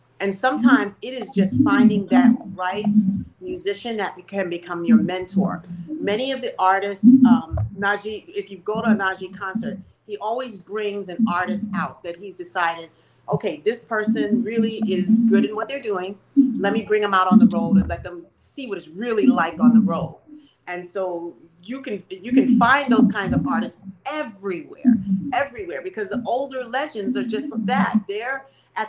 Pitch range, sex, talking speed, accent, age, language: 190-240 Hz, female, 180 wpm, American, 40-59, English